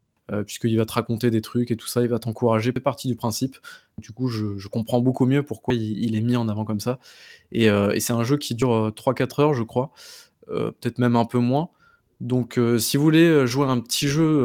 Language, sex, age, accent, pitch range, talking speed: French, male, 20-39, French, 115-135 Hz, 245 wpm